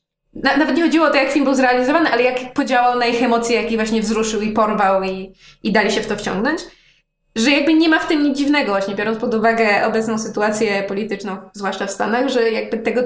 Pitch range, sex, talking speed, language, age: 220-270 Hz, female, 220 wpm, Polish, 20-39